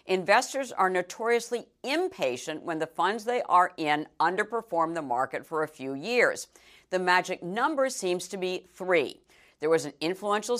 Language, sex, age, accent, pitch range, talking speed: English, female, 50-69, American, 160-215 Hz, 160 wpm